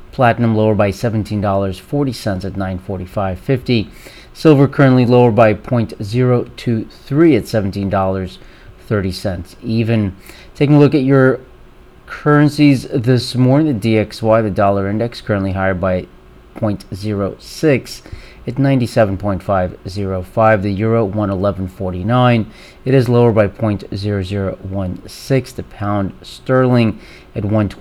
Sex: male